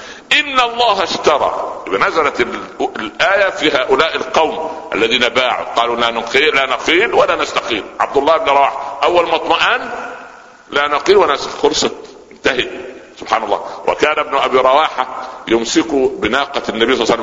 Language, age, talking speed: Arabic, 60-79, 135 wpm